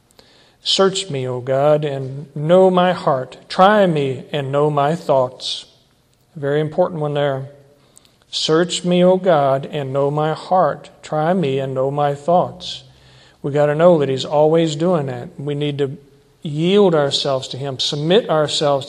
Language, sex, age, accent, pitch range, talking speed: English, male, 50-69, American, 140-170 Hz, 160 wpm